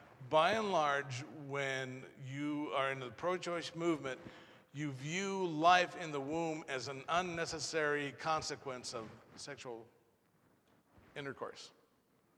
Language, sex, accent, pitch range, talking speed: English, male, American, 130-165 Hz, 110 wpm